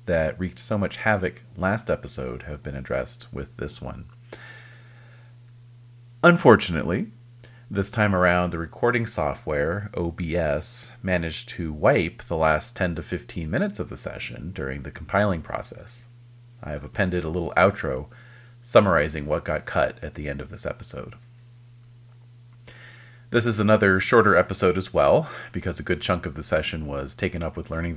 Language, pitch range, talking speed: English, 90-120 Hz, 155 wpm